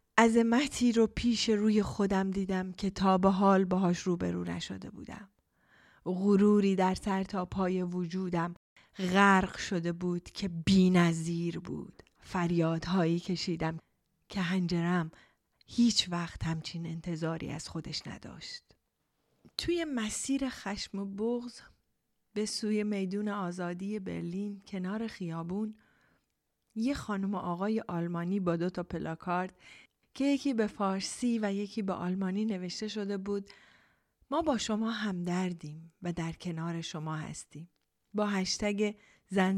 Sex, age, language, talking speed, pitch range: female, 30-49, Persian, 125 wpm, 170-205 Hz